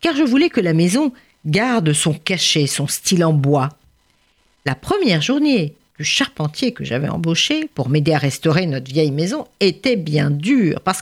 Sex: female